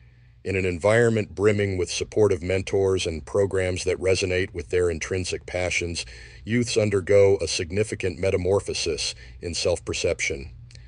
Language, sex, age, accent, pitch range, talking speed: English, male, 50-69, American, 75-100 Hz, 120 wpm